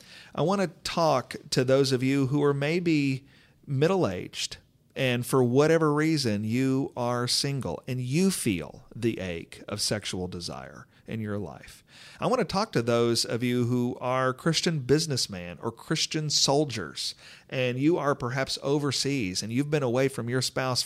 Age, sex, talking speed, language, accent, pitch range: 40-59, male, 165 wpm, English, American, 110-150 Hz